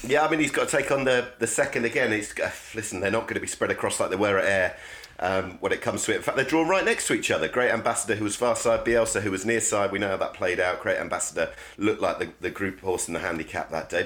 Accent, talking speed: British, 305 wpm